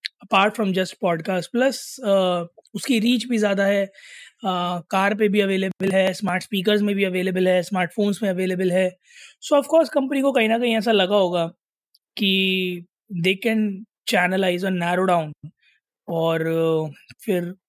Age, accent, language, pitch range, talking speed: 20-39, native, Hindi, 185-225 Hz, 155 wpm